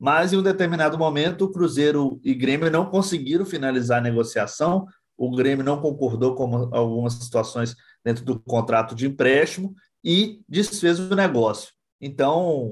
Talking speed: 145 wpm